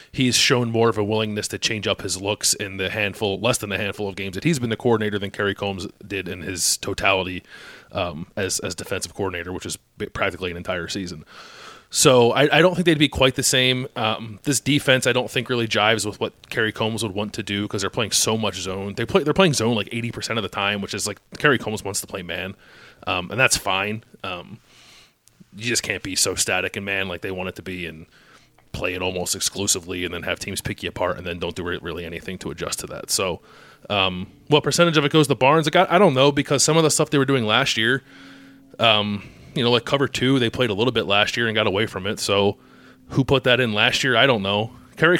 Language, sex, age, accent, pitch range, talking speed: English, male, 30-49, American, 95-130 Hz, 250 wpm